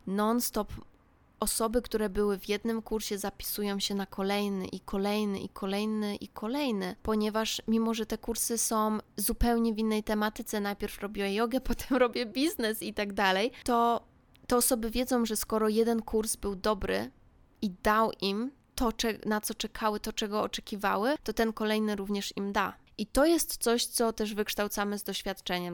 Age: 20-39